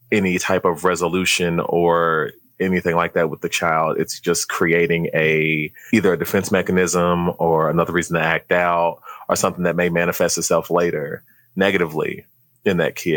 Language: English